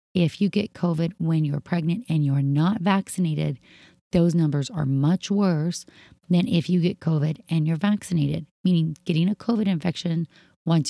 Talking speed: 165 wpm